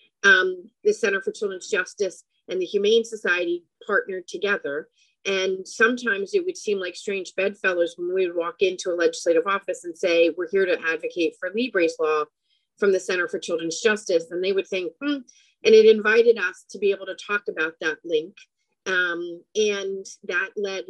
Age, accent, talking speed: 40-59, American, 185 wpm